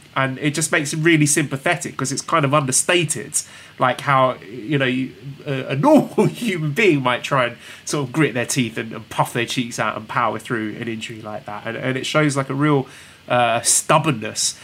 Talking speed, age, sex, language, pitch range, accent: 205 wpm, 20-39, male, English, 125-155 Hz, British